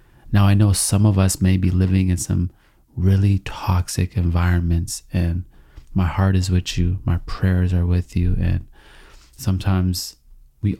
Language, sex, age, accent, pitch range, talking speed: English, male, 30-49, American, 90-105 Hz, 155 wpm